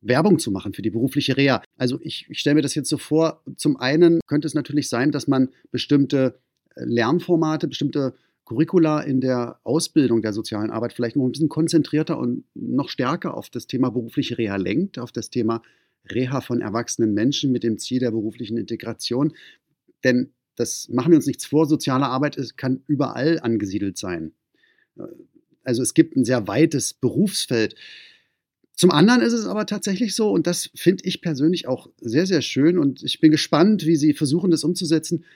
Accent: German